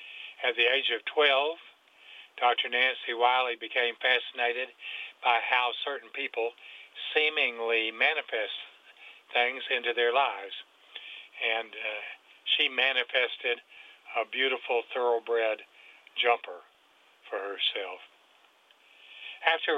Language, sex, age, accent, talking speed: English, male, 50-69, American, 95 wpm